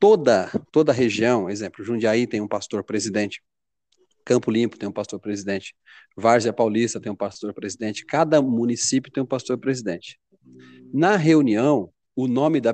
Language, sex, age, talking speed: Portuguese, male, 40-59, 130 wpm